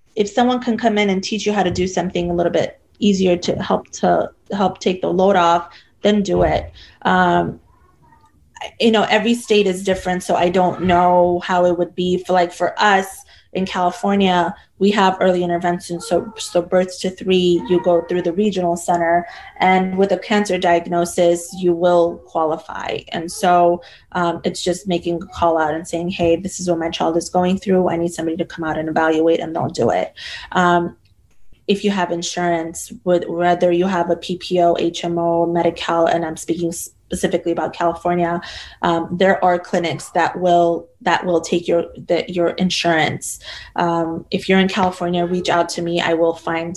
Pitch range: 170-185 Hz